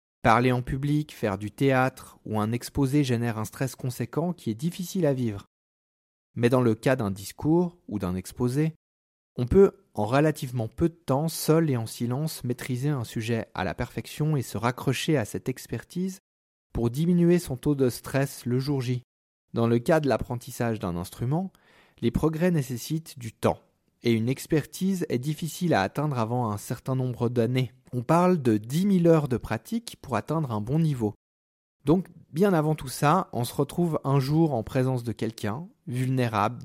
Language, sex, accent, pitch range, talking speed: French, male, French, 115-155 Hz, 180 wpm